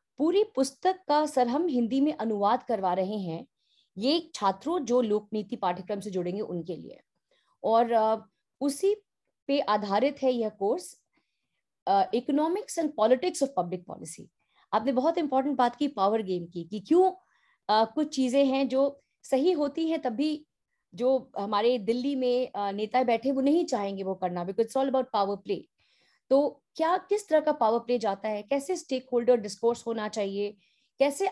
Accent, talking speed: native, 160 wpm